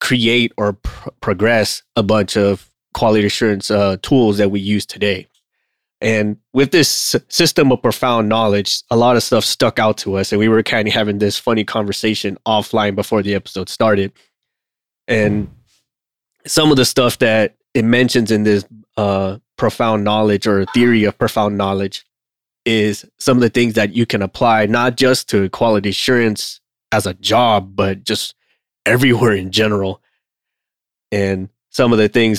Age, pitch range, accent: 20-39, 100-120 Hz, American